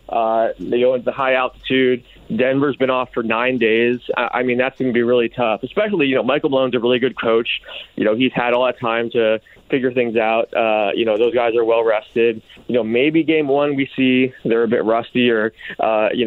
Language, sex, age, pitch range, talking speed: English, male, 20-39, 115-130 Hz, 235 wpm